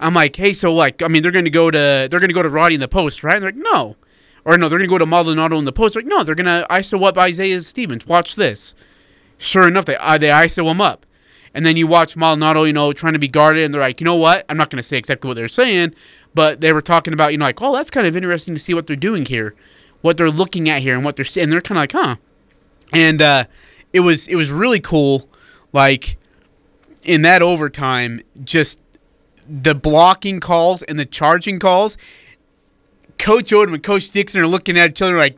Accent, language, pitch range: American, English, 155-200 Hz